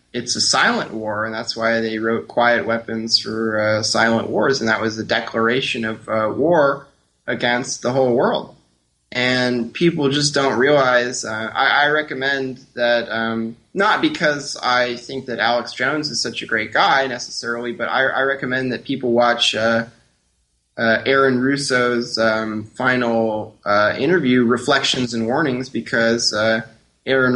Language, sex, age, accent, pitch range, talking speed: English, male, 20-39, American, 110-120 Hz, 160 wpm